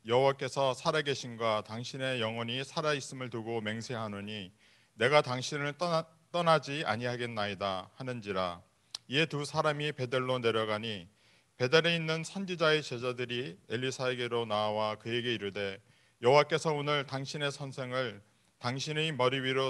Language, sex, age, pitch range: Korean, male, 40-59, 110-140 Hz